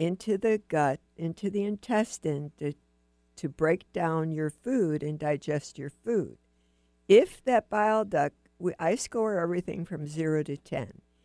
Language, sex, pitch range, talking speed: English, female, 145-180 Hz, 150 wpm